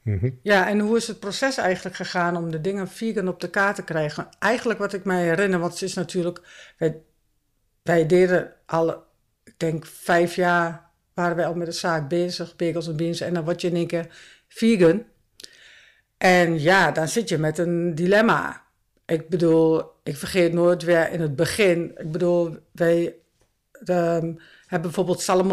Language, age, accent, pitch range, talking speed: Dutch, 60-79, Dutch, 170-185 Hz, 180 wpm